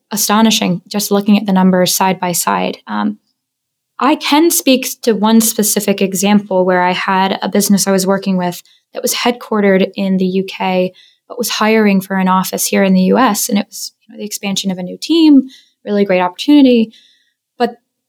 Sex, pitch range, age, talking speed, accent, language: female, 195-230 Hz, 10-29, 180 wpm, American, English